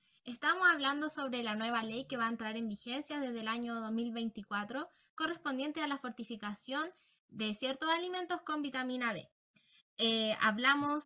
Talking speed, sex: 150 wpm, female